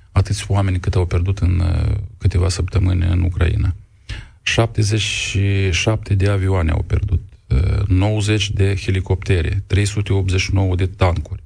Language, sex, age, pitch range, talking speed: Romanian, male, 40-59, 90-100 Hz, 120 wpm